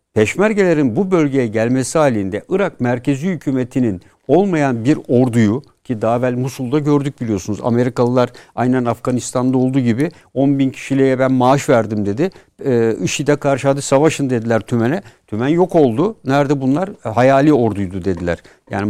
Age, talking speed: 60-79, 135 wpm